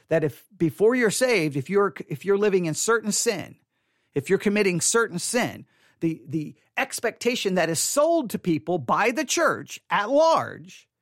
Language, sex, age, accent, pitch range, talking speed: English, male, 40-59, American, 150-205 Hz, 170 wpm